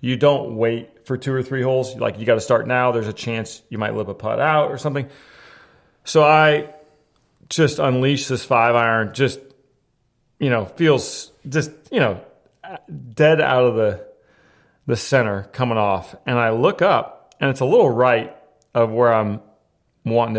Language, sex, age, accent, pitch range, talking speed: English, male, 40-59, American, 115-140 Hz, 175 wpm